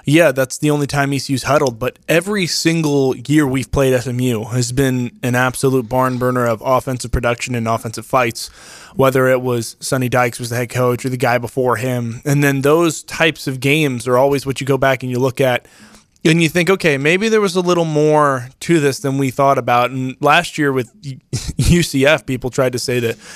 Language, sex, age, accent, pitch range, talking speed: English, male, 20-39, American, 125-140 Hz, 210 wpm